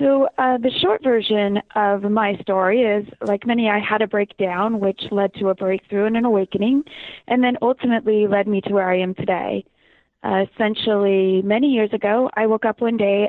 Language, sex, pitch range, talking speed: English, female, 200-240 Hz, 195 wpm